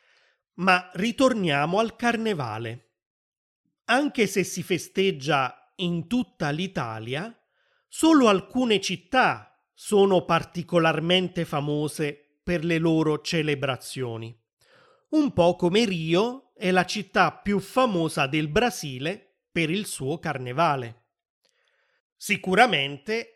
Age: 30-49